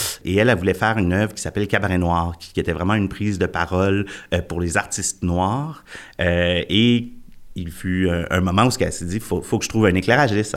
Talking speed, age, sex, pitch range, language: 220 wpm, 30-49, male, 85-110 Hz, French